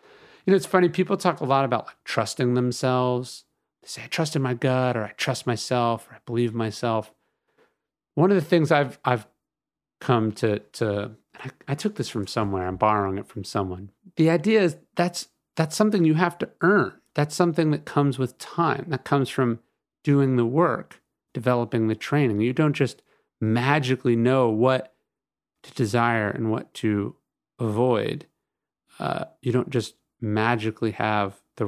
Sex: male